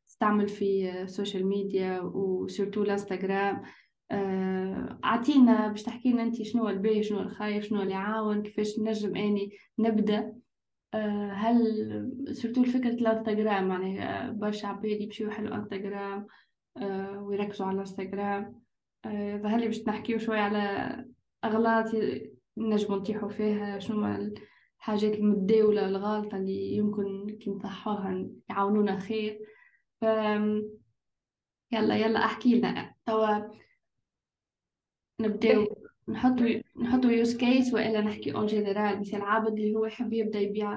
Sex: female